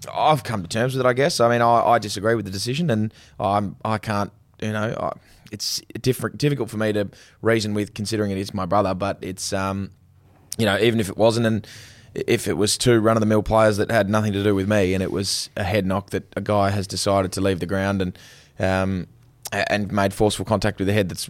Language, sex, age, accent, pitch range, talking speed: English, male, 20-39, Australian, 100-110 Hz, 235 wpm